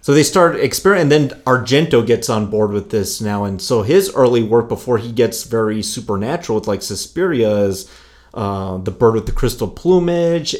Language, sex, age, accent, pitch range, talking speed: English, male, 30-49, American, 105-135 Hz, 195 wpm